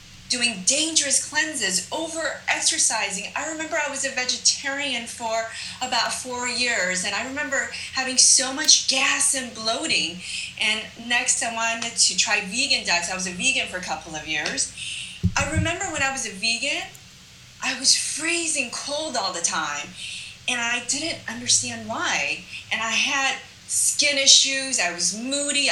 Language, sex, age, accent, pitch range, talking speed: English, female, 30-49, American, 200-275 Hz, 155 wpm